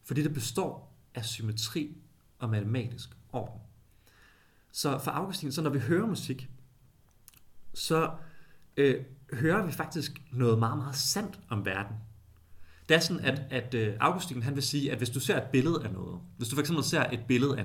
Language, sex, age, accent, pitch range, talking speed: Danish, male, 30-49, native, 110-145 Hz, 175 wpm